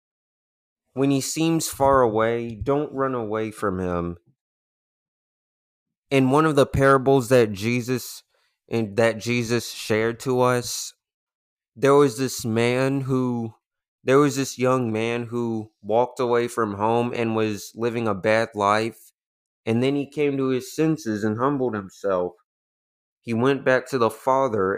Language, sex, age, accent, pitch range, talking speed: English, male, 20-39, American, 105-130 Hz, 145 wpm